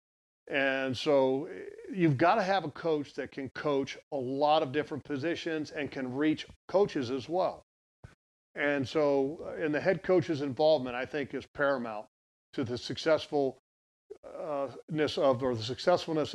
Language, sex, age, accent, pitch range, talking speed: English, male, 40-59, American, 125-150 Hz, 140 wpm